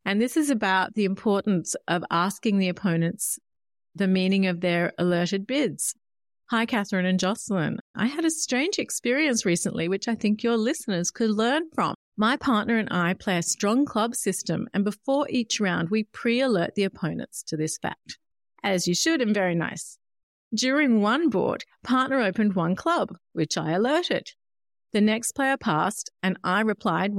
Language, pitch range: English, 185-245 Hz